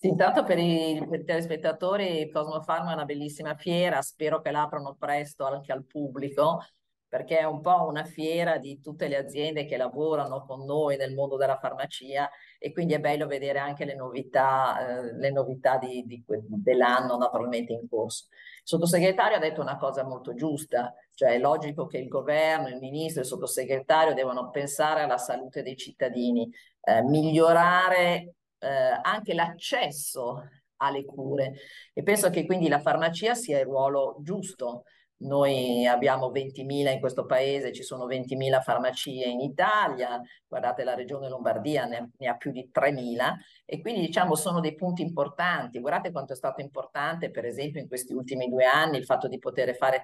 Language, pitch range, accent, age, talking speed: Italian, 130-165 Hz, native, 50-69, 170 wpm